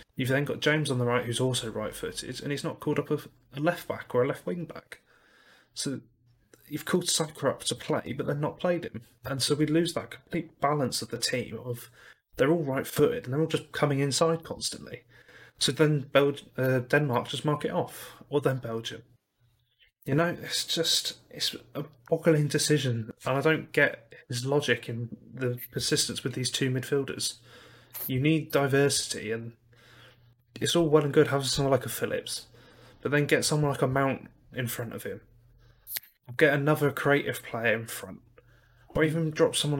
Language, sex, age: English, male, 30-49